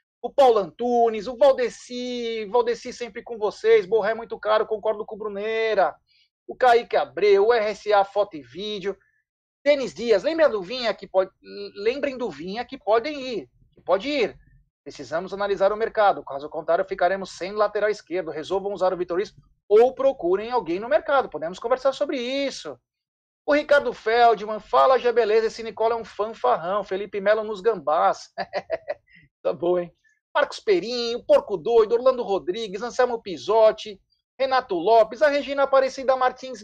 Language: Portuguese